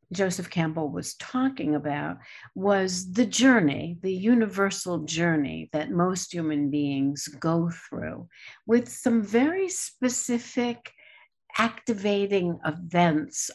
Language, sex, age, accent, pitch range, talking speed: English, female, 60-79, American, 155-195 Hz, 100 wpm